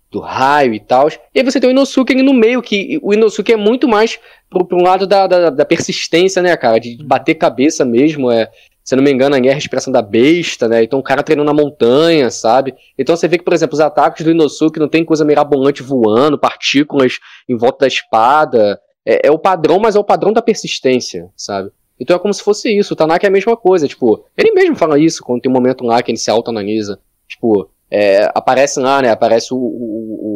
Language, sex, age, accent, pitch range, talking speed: Portuguese, male, 20-39, Brazilian, 130-200 Hz, 230 wpm